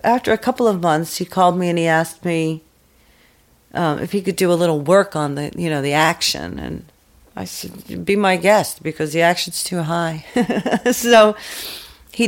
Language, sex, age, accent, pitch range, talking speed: Dutch, female, 40-59, American, 165-220 Hz, 190 wpm